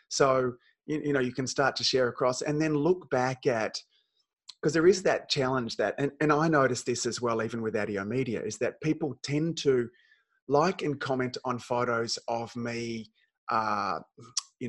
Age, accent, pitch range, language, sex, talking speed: 30-49, Australian, 120-155 Hz, English, male, 185 wpm